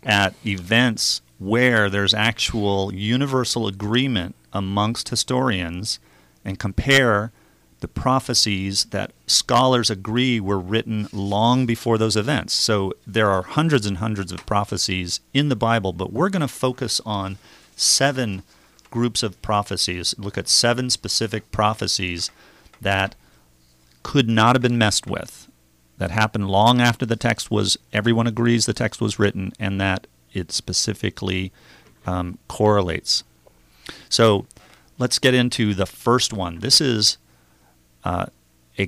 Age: 40-59